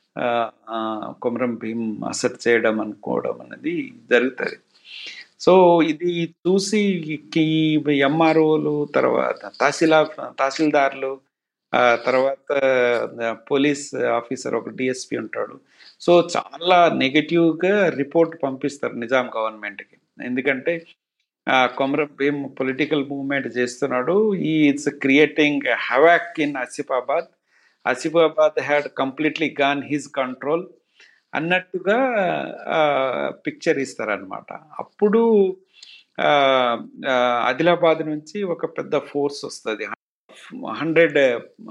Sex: male